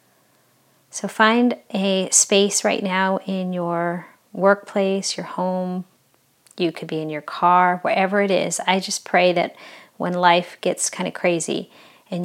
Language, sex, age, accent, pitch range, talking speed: English, female, 40-59, American, 175-190 Hz, 150 wpm